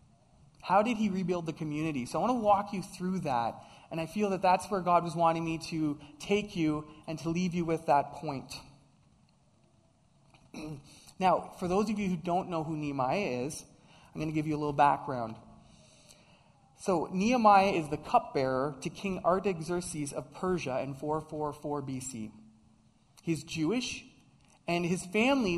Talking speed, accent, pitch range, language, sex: 165 wpm, American, 150-205 Hz, English, male